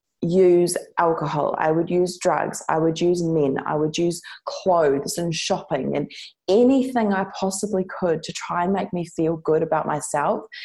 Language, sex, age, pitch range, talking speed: English, female, 20-39, 160-195 Hz, 170 wpm